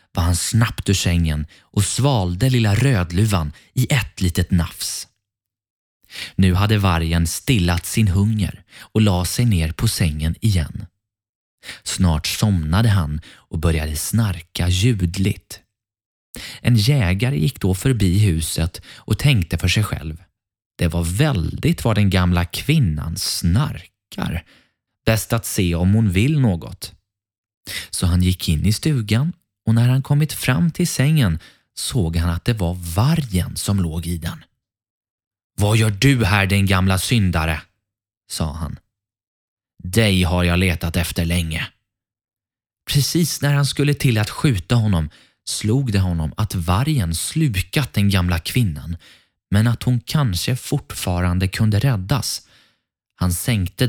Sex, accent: male, native